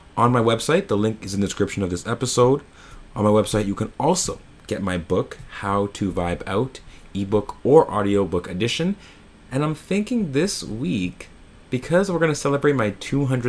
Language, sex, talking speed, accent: English, male, 180 wpm, American